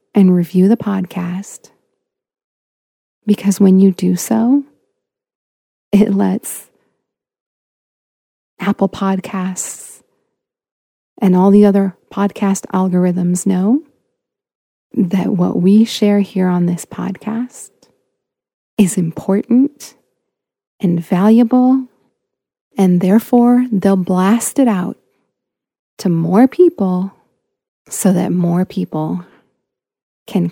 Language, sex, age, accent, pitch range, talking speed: English, female, 30-49, American, 180-215 Hz, 90 wpm